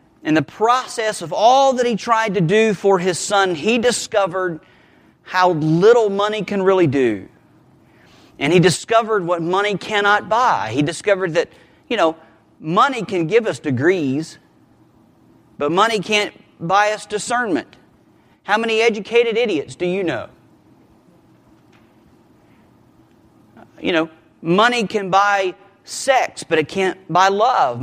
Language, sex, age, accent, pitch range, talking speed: English, male, 40-59, American, 175-220 Hz, 135 wpm